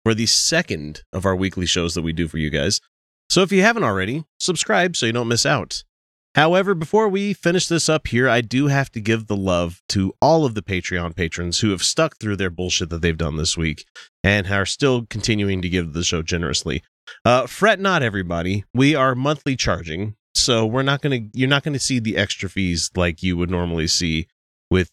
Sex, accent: male, American